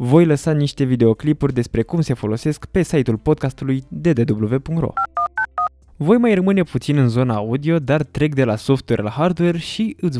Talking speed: 165 wpm